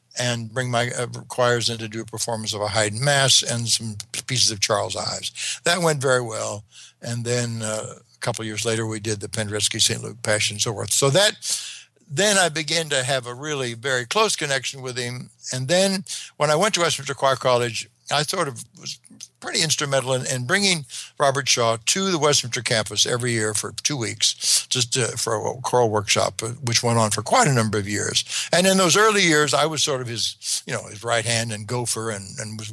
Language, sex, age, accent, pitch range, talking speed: English, male, 60-79, American, 110-140 Hz, 220 wpm